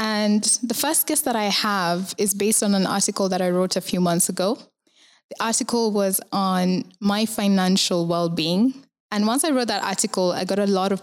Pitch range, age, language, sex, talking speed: 185-225 Hz, 20-39, English, female, 200 wpm